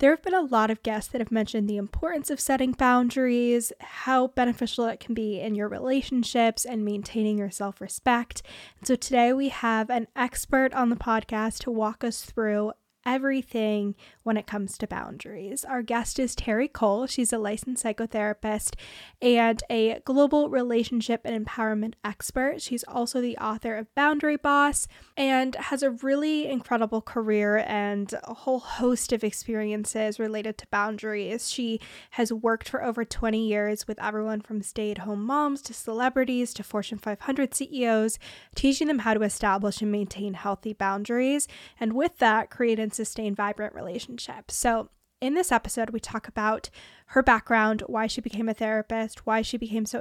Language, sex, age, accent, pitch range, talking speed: English, female, 10-29, American, 215-255 Hz, 165 wpm